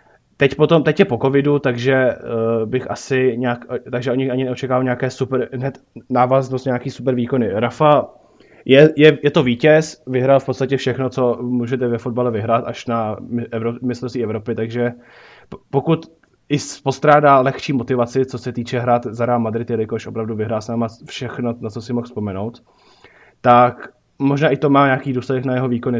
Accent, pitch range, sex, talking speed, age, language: native, 115-135 Hz, male, 170 wpm, 20-39, Czech